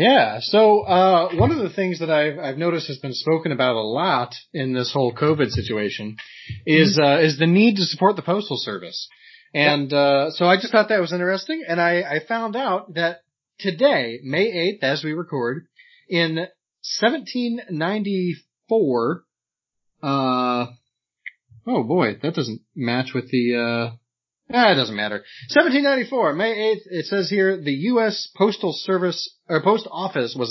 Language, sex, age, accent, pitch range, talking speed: English, male, 30-49, American, 130-195 Hz, 165 wpm